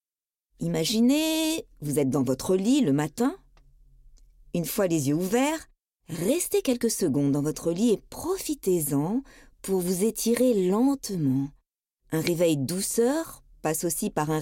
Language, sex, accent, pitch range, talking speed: French, female, French, 160-245 Hz, 135 wpm